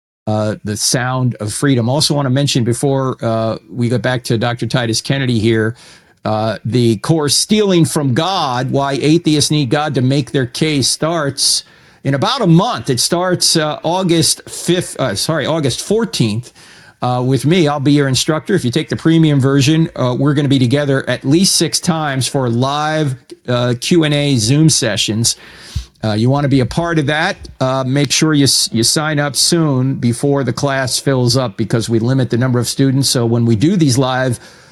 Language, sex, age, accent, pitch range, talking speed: English, male, 50-69, American, 120-155 Hz, 190 wpm